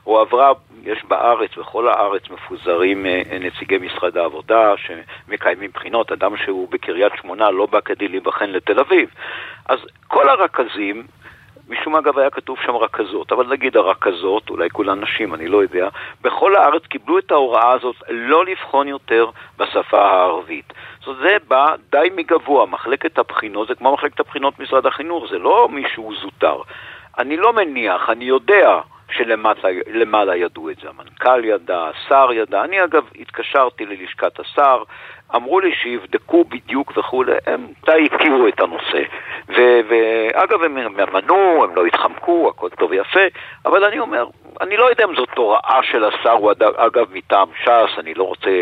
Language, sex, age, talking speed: Hebrew, male, 50-69, 155 wpm